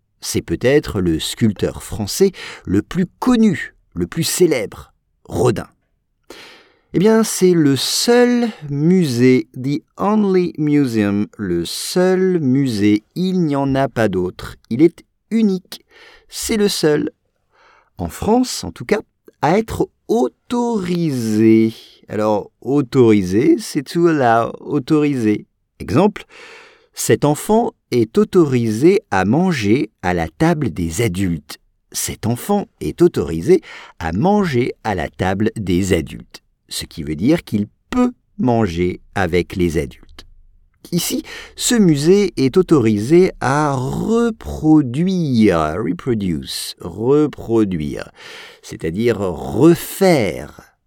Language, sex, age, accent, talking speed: English, male, 50-69, French, 110 wpm